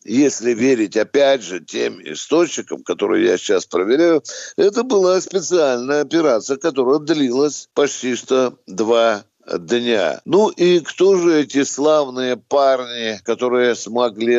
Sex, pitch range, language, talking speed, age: male, 120-180 Hz, Russian, 120 wpm, 60-79